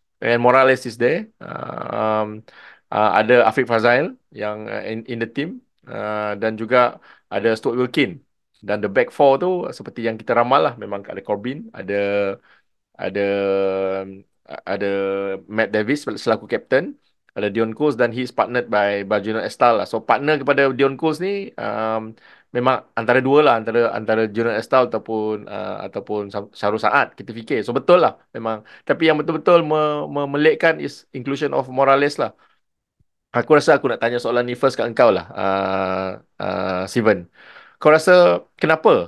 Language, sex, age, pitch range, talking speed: Malay, male, 20-39, 105-135 Hz, 160 wpm